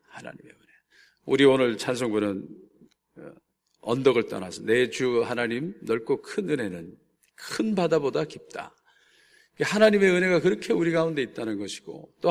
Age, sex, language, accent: 40-59, male, Korean, native